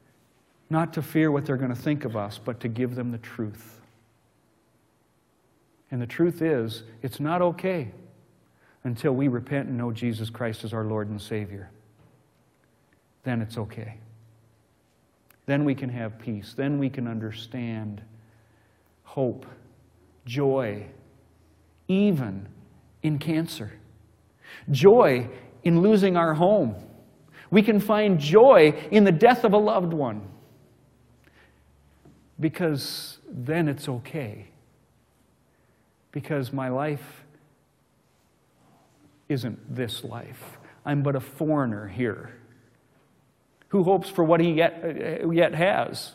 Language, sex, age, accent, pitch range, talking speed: English, male, 40-59, American, 110-150 Hz, 120 wpm